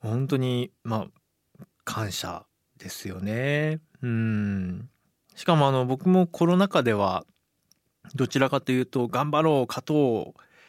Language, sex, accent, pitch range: Japanese, male, native, 105-150 Hz